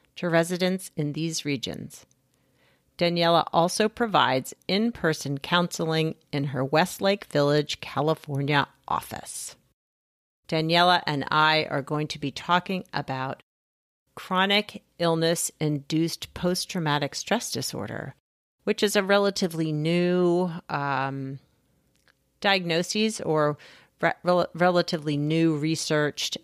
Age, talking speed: 40-59, 100 wpm